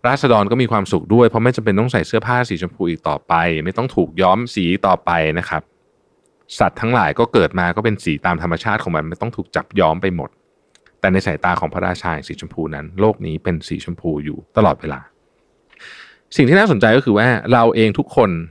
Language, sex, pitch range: Thai, male, 85-115 Hz